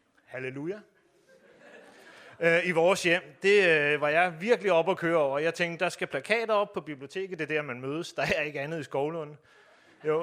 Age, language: 30-49, Danish